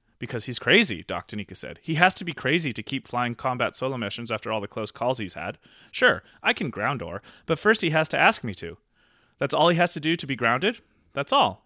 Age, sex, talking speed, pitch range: 30-49, male, 245 wpm, 110-145 Hz